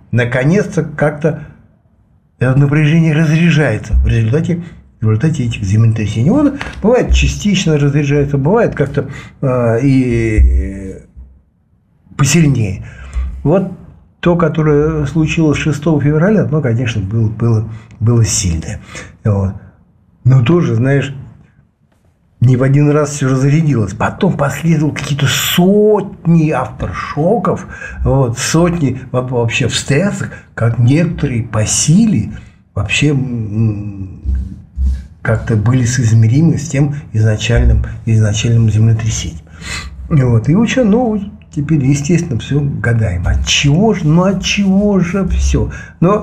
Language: Russian